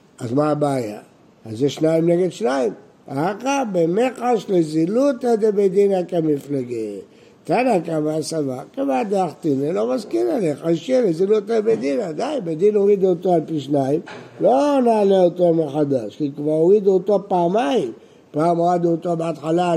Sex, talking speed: male, 135 wpm